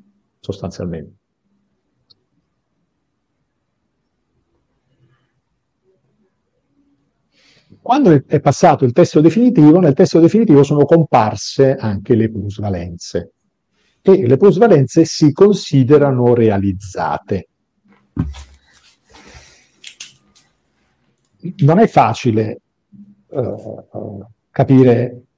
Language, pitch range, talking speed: Italian, 105-150 Hz, 60 wpm